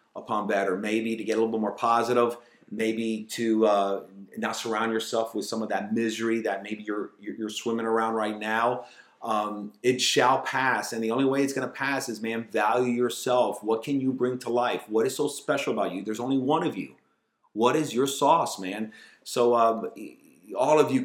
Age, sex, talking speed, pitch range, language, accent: 40-59, male, 210 wpm, 115-135 Hz, English, American